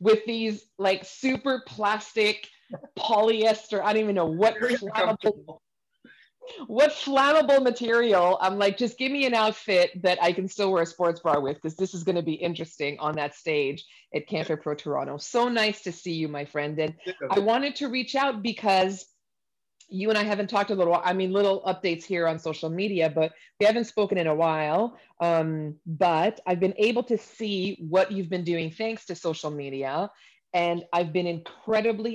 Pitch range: 160-215 Hz